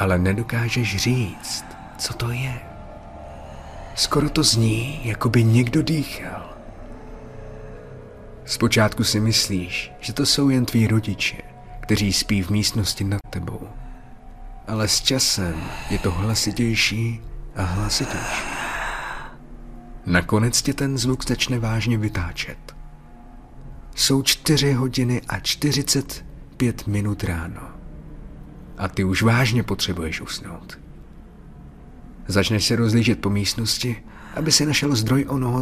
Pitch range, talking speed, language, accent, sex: 100-125 Hz, 110 wpm, Czech, native, male